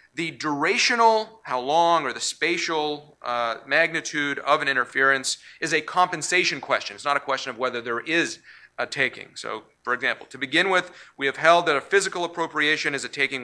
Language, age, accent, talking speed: English, 40-59, American, 190 wpm